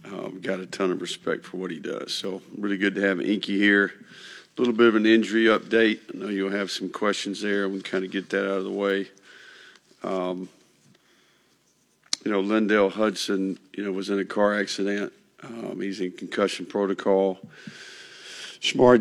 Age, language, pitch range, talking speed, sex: 50-69, English, 95-105 Hz, 185 wpm, male